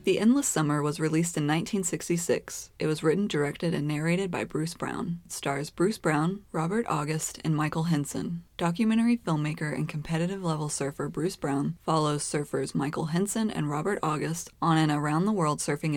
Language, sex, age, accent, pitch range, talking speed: English, female, 20-39, American, 145-175 Hz, 175 wpm